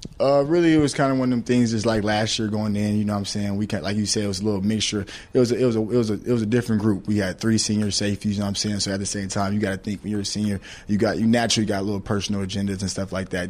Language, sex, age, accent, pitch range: English, male, 20-39, American, 100-110 Hz